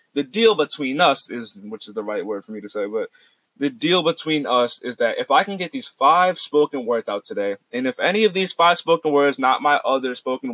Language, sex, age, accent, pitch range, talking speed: English, male, 20-39, American, 125-170 Hz, 245 wpm